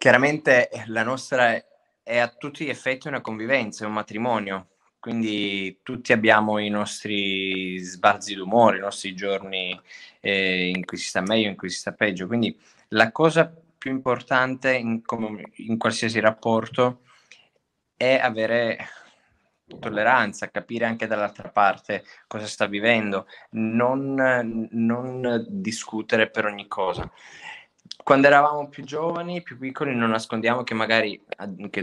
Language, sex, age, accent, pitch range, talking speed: Italian, male, 20-39, native, 100-120 Hz, 130 wpm